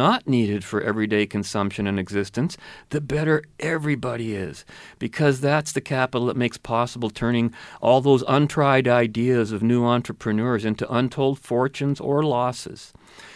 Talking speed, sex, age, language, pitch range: 140 wpm, male, 40-59, English, 105-140 Hz